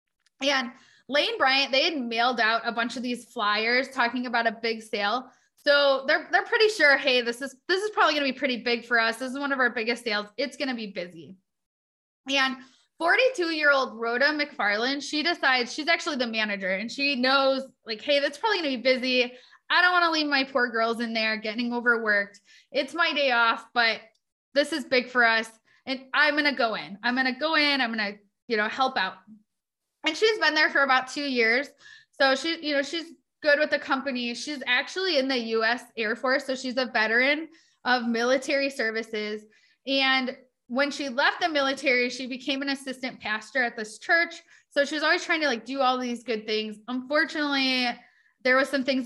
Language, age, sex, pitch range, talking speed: English, 20-39, female, 230-285 Hz, 210 wpm